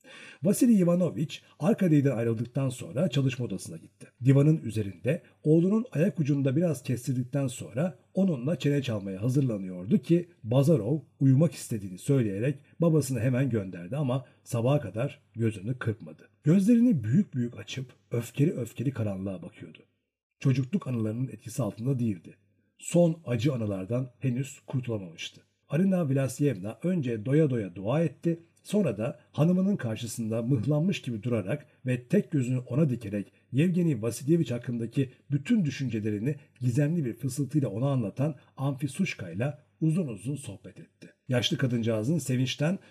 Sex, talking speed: male, 125 wpm